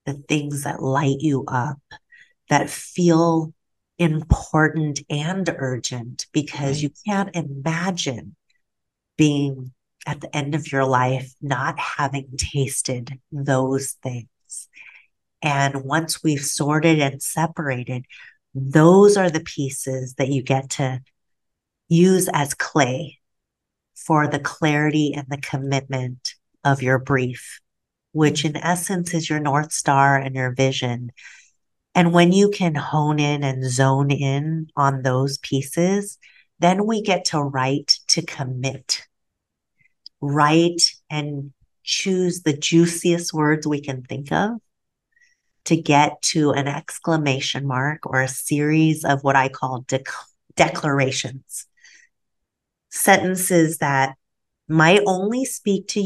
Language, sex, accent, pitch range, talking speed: English, female, American, 135-165 Hz, 120 wpm